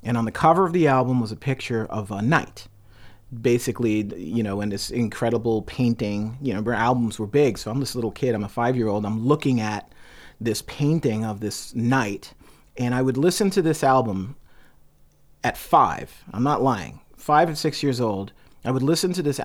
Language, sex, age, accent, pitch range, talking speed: English, male, 40-59, American, 120-150 Hz, 195 wpm